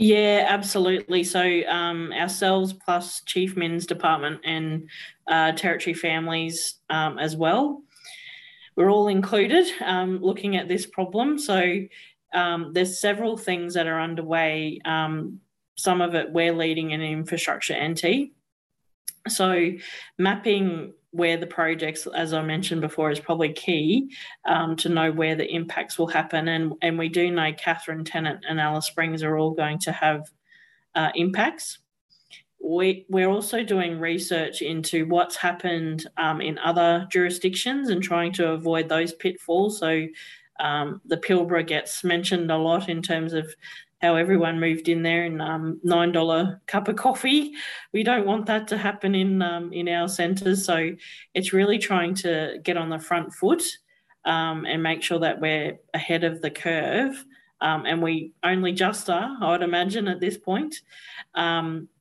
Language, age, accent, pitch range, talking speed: English, 20-39, Australian, 160-190 Hz, 155 wpm